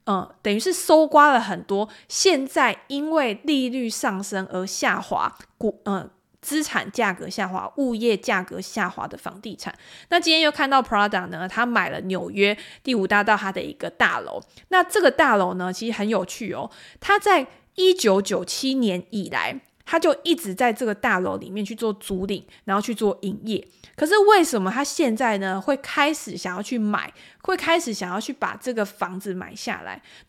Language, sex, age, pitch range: Chinese, female, 20-39, 200-275 Hz